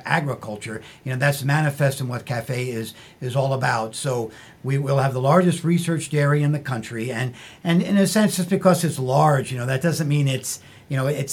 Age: 50-69